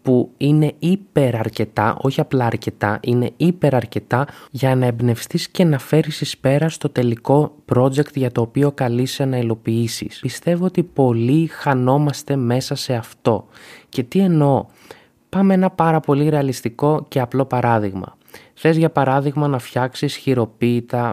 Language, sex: Greek, male